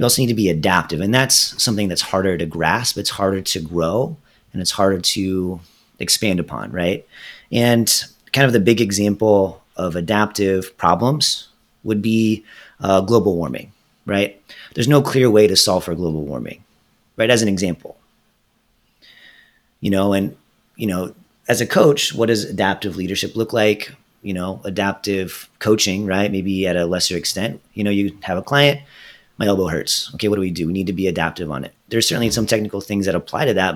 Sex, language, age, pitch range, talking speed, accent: male, English, 30-49, 90-110 Hz, 190 wpm, American